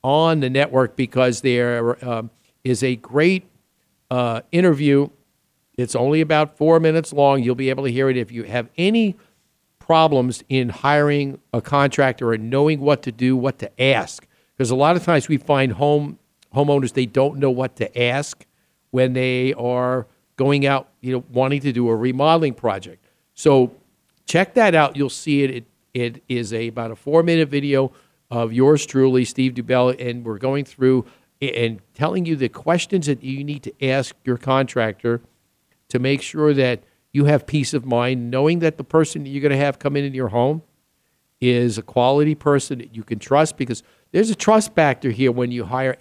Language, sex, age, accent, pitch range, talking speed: English, male, 50-69, American, 125-145 Hz, 190 wpm